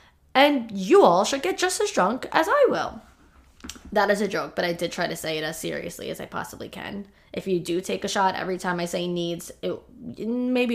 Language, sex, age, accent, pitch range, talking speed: English, female, 20-39, American, 185-245 Hz, 225 wpm